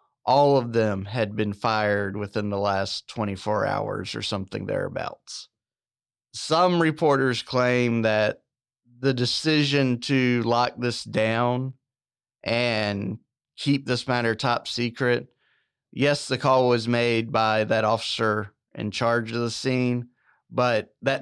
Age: 30-49